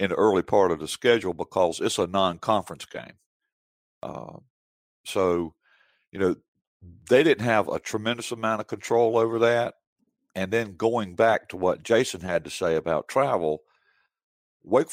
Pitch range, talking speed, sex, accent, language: 85-115 Hz, 155 wpm, male, American, English